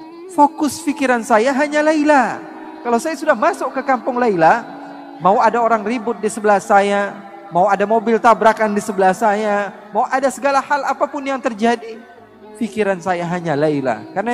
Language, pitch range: Indonesian, 185-255 Hz